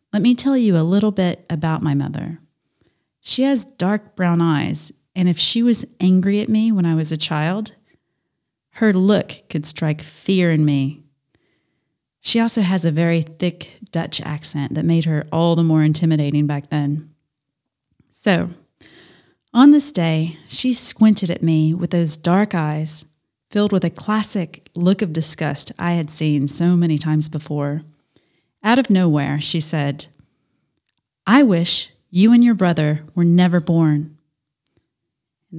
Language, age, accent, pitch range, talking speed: English, 30-49, American, 155-185 Hz, 155 wpm